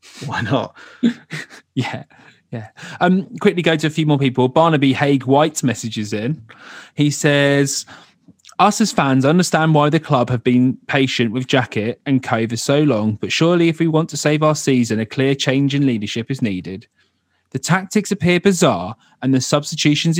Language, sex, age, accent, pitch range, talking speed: English, male, 30-49, British, 120-165 Hz, 170 wpm